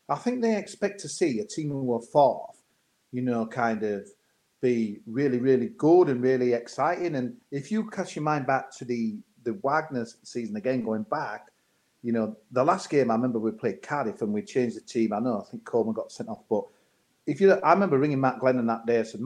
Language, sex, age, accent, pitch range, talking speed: English, male, 40-59, British, 115-155 Hz, 225 wpm